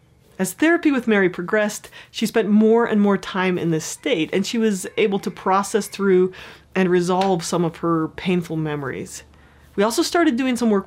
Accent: American